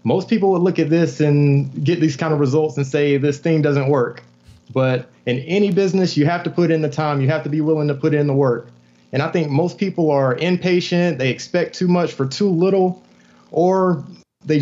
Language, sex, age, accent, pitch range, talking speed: English, male, 30-49, American, 135-165 Hz, 225 wpm